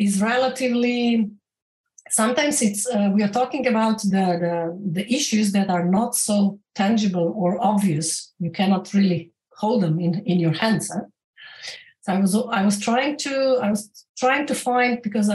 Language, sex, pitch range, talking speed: English, female, 195-230 Hz, 170 wpm